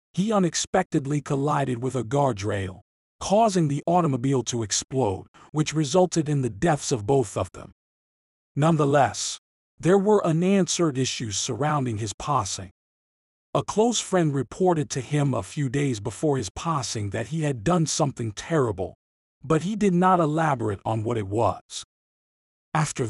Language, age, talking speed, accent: English, 50-69, 145 wpm, American